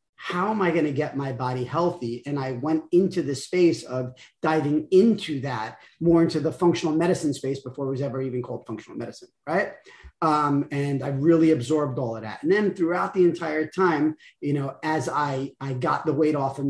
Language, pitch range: English, 135-170 Hz